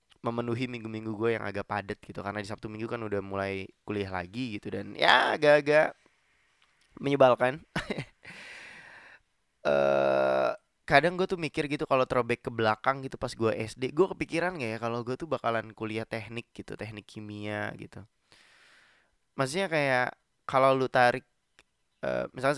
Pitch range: 105-140 Hz